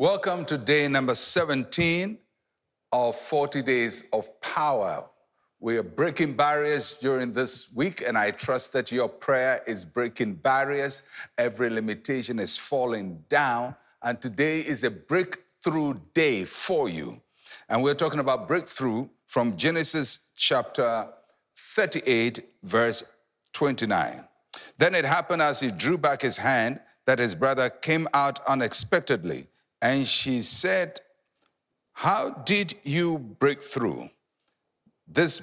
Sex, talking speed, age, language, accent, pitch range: male, 125 wpm, 60-79, English, Nigerian, 125-155 Hz